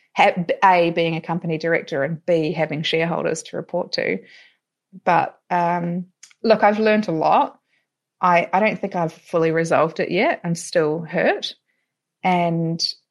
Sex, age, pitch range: female, 30-49, 160-180 Hz